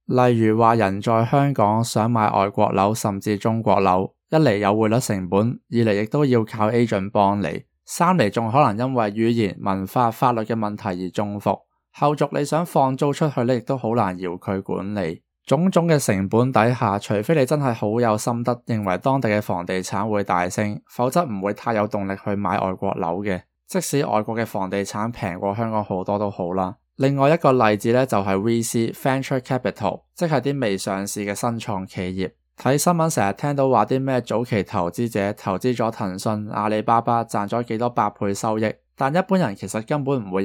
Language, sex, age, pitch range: Chinese, male, 20-39, 100-130 Hz